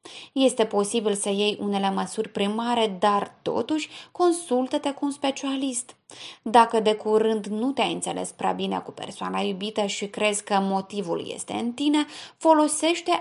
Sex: female